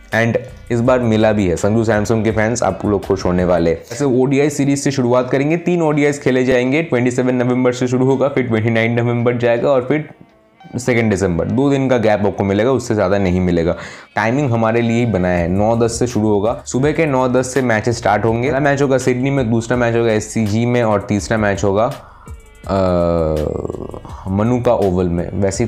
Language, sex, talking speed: Hindi, male, 200 wpm